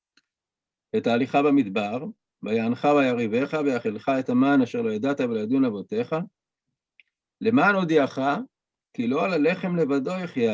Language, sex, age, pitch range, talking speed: Hebrew, male, 50-69, 145-230 Hz, 120 wpm